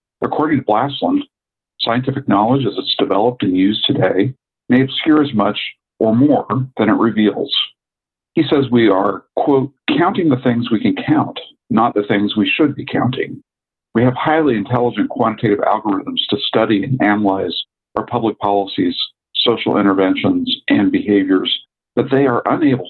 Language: English